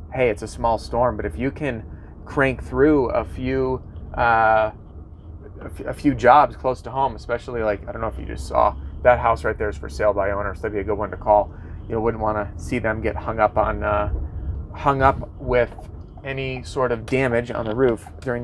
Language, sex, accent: English, male, American